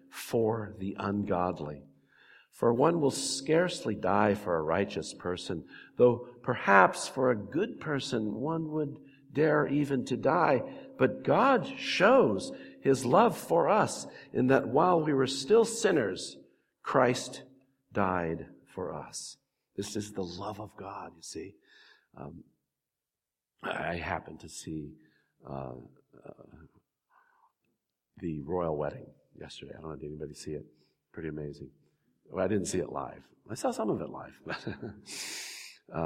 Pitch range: 80-130 Hz